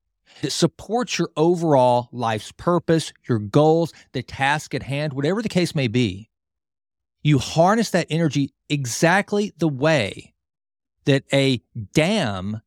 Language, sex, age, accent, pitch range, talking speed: English, male, 40-59, American, 110-160 Hz, 130 wpm